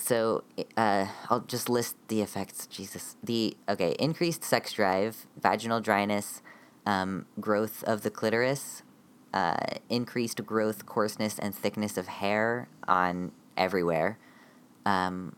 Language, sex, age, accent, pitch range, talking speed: English, female, 20-39, American, 95-115 Hz, 120 wpm